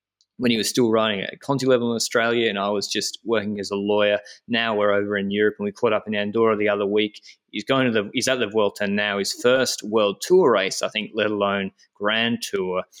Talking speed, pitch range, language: 240 wpm, 95-110 Hz, English